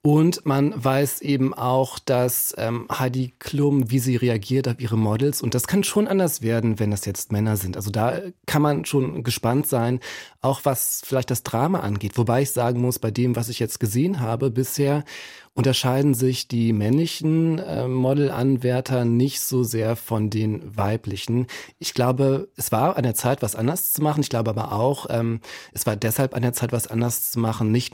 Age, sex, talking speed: 40-59, male, 195 wpm